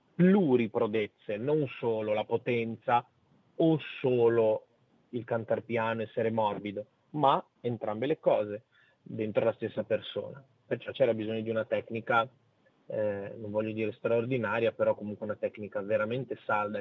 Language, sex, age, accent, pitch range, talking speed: Italian, male, 30-49, native, 110-135 Hz, 130 wpm